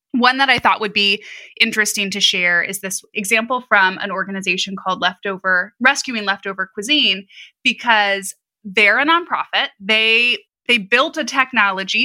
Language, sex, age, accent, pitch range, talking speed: English, female, 20-39, American, 195-250 Hz, 145 wpm